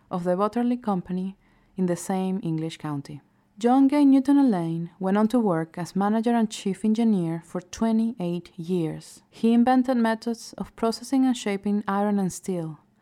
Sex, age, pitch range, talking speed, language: female, 20-39, 170-225 Hz, 160 wpm, English